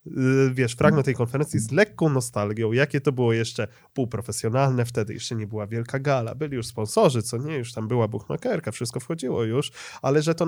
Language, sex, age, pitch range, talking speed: Polish, male, 20-39, 115-165 Hz, 190 wpm